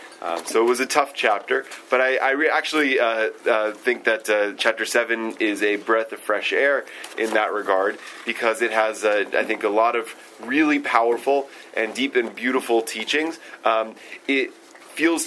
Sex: male